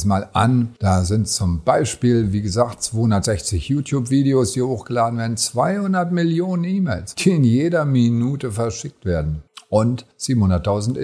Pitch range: 95-135 Hz